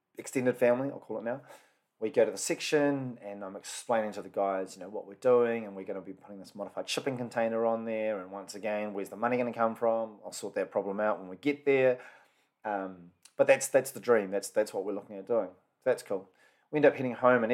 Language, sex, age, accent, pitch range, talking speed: English, male, 30-49, Australian, 100-135 Hz, 255 wpm